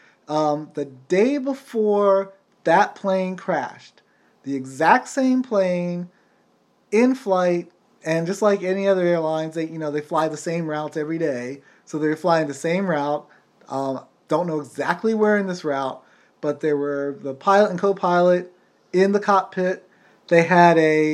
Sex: male